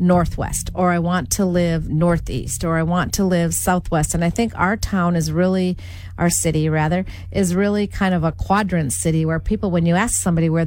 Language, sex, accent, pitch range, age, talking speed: English, female, American, 140-180 Hz, 40-59, 210 wpm